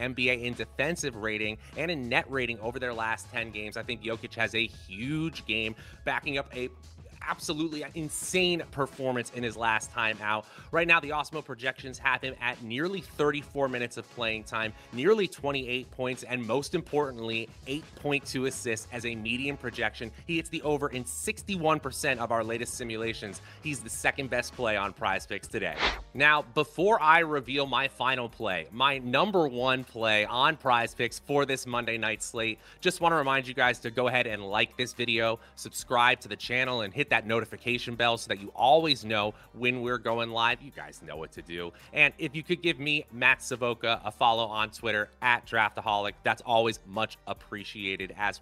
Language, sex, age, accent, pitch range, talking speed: English, male, 30-49, American, 115-140 Hz, 190 wpm